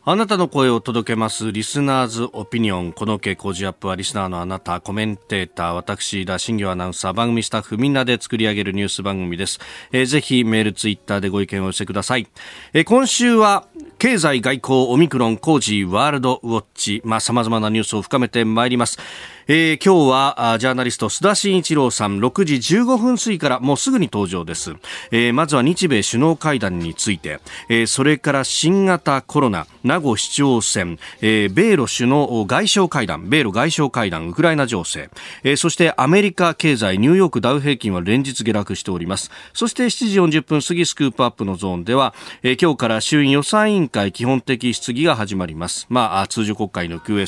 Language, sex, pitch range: Japanese, male, 100-145 Hz